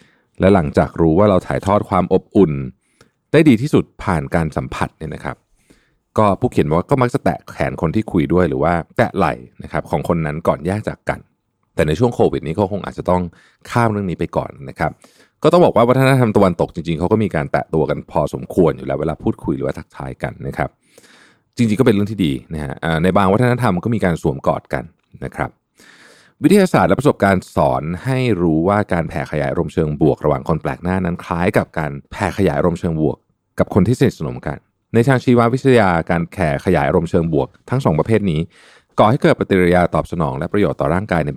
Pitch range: 80-110 Hz